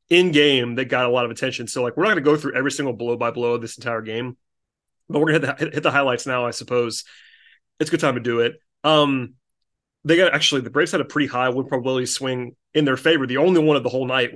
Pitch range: 130-165 Hz